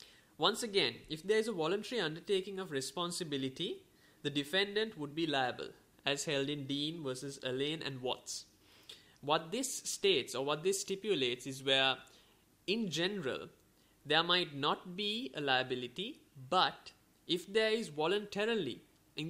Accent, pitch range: Indian, 140-195 Hz